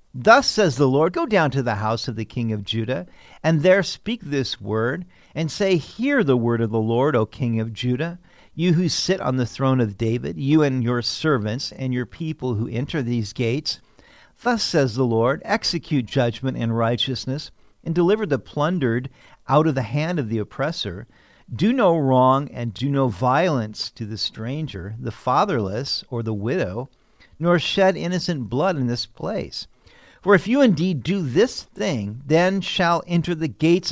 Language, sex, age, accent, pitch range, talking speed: English, male, 50-69, American, 120-175 Hz, 180 wpm